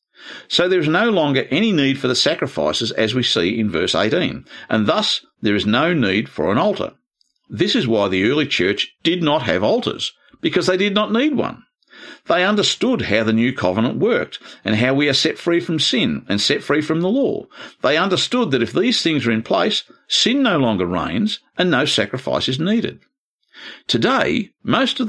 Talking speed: 200 wpm